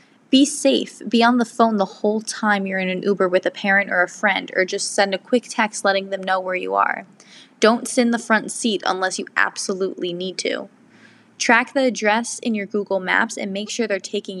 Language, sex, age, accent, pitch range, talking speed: English, female, 20-39, American, 190-230 Hz, 225 wpm